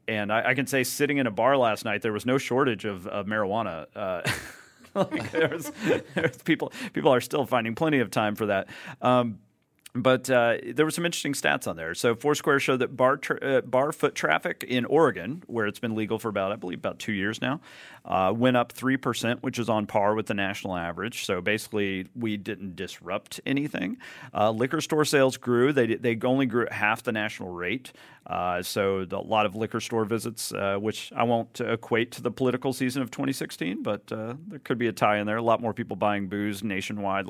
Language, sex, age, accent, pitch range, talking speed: English, male, 40-59, American, 105-130 Hz, 210 wpm